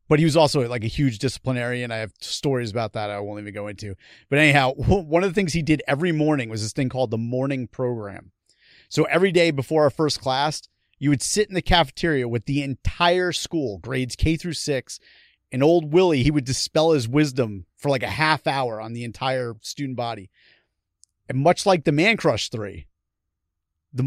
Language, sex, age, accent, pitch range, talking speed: English, male, 30-49, American, 120-165 Hz, 205 wpm